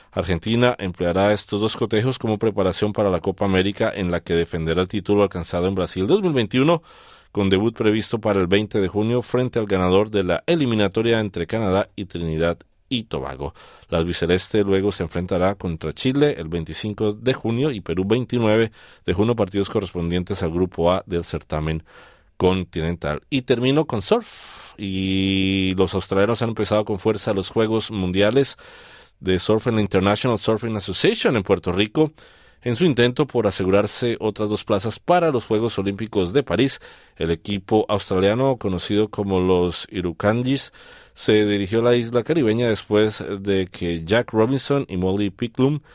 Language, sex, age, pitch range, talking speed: Spanish, male, 40-59, 90-110 Hz, 160 wpm